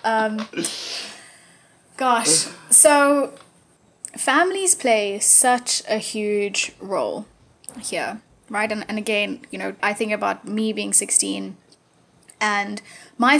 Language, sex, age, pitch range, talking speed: English, female, 10-29, 205-240 Hz, 110 wpm